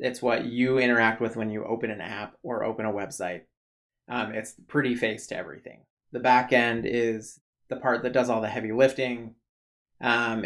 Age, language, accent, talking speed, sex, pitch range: 20-39, English, American, 190 wpm, male, 110-125 Hz